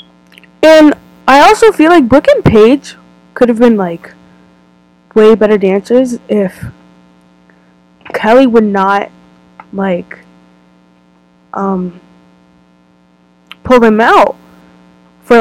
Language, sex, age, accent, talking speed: English, female, 10-29, American, 95 wpm